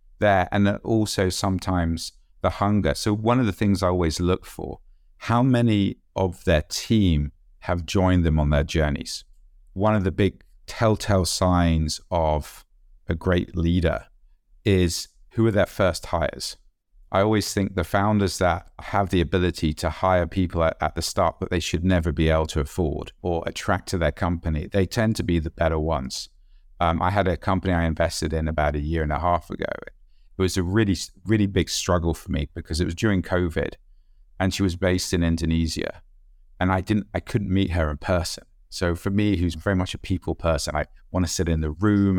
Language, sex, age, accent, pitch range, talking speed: English, male, 50-69, British, 80-100 Hz, 195 wpm